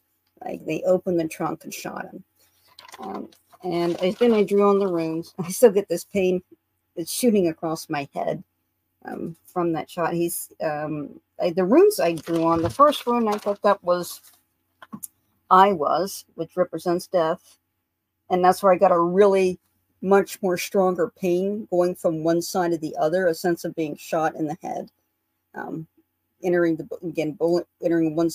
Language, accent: English, American